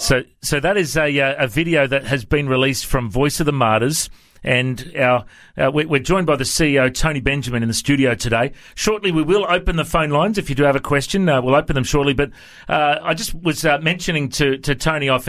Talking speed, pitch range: 235 wpm, 125-150 Hz